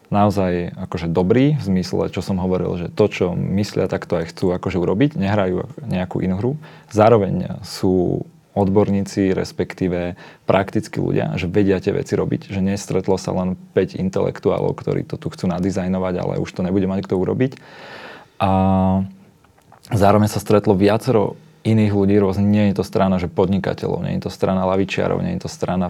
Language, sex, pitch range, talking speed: Slovak, male, 95-105 Hz, 165 wpm